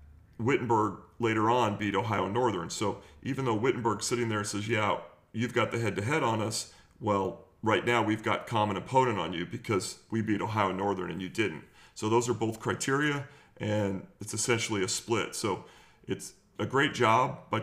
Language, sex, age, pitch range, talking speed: English, male, 40-59, 105-120 Hz, 185 wpm